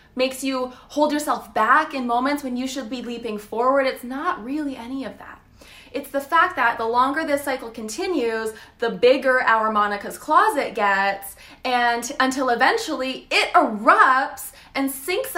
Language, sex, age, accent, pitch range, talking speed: English, female, 20-39, American, 235-320 Hz, 160 wpm